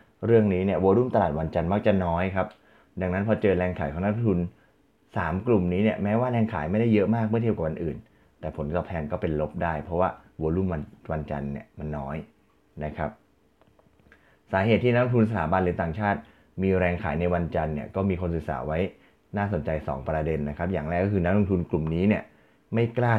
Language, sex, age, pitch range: Thai, male, 20-39, 80-100 Hz